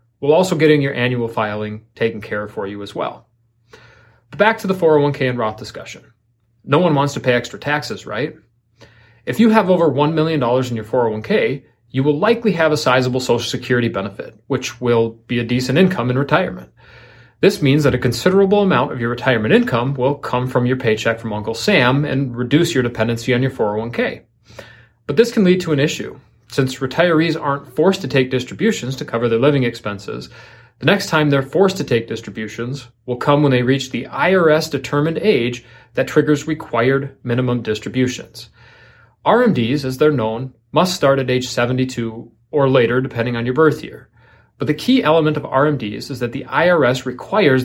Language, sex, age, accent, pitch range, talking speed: English, male, 30-49, American, 115-150 Hz, 185 wpm